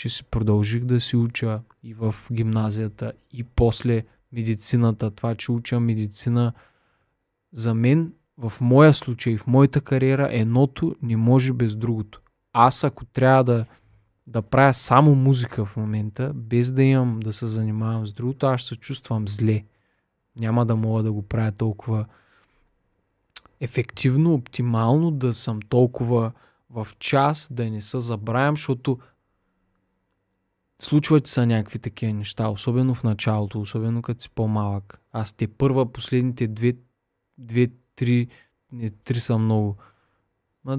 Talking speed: 140 wpm